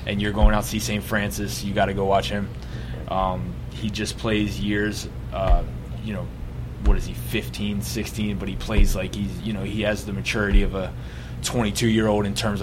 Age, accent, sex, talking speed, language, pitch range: 20-39, American, male, 215 wpm, English, 100-110 Hz